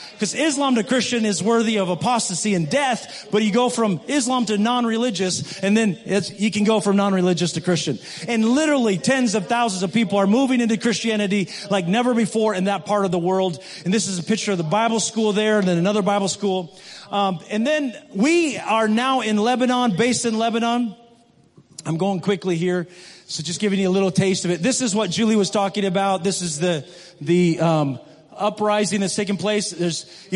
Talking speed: 205 wpm